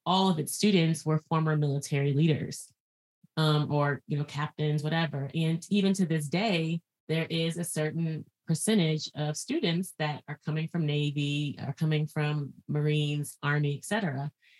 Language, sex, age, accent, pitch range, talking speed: English, female, 30-49, American, 150-175 Hz, 155 wpm